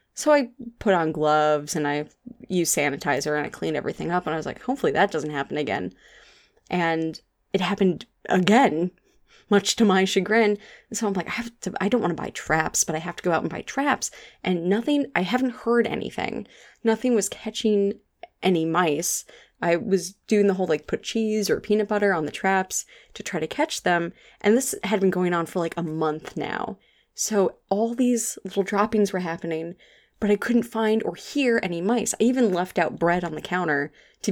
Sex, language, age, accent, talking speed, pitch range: female, English, 20-39, American, 205 wpm, 170-215 Hz